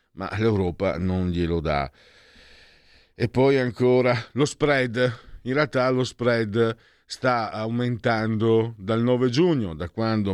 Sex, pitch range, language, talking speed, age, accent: male, 90-115 Hz, Italian, 120 wpm, 50-69, native